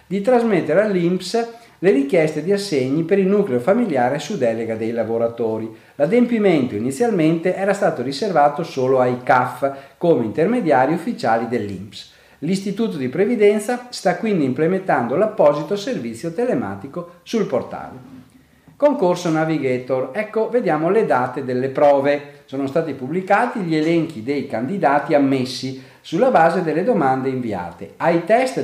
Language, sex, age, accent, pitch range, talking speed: Italian, male, 50-69, native, 125-195 Hz, 130 wpm